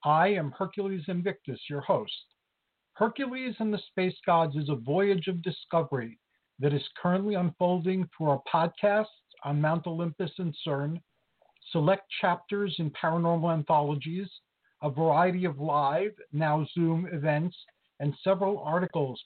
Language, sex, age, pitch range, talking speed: English, male, 50-69, 155-195 Hz, 135 wpm